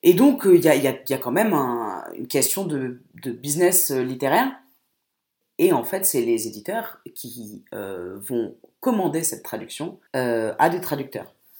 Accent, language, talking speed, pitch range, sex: French, French, 155 wpm, 130-175 Hz, female